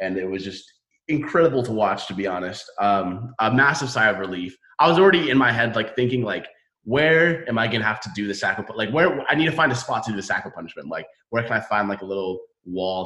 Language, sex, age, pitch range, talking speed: English, male, 20-39, 95-125 Hz, 265 wpm